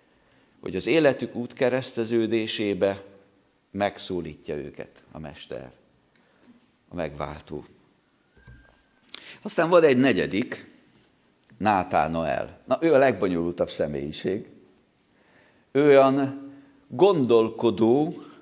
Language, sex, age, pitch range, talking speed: Hungarian, male, 50-69, 115-145 Hz, 80 wpm